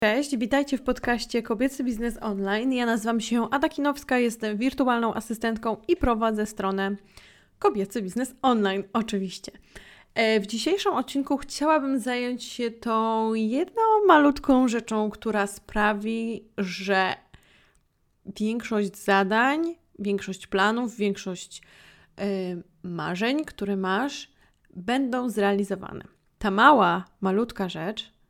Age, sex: 20-39, female